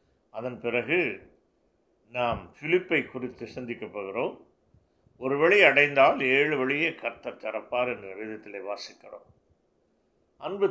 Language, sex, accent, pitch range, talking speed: Tamil, male, native, 115-140 Hz, 100 wpm